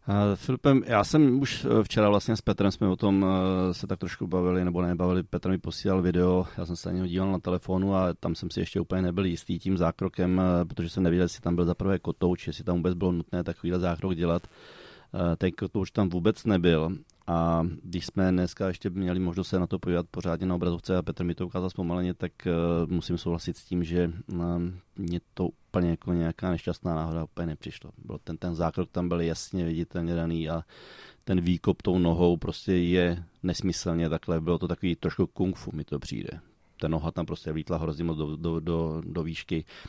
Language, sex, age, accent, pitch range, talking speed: Czech, male, 30-49, native, 85-95 Hz, 195 wpm